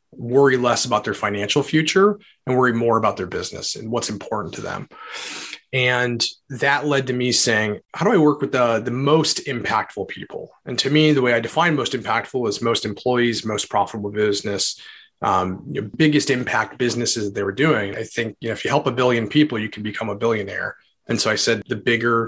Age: 30-49